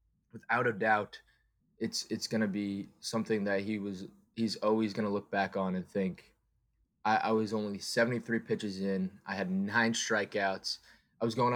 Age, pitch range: 20-39, 100-115 Hz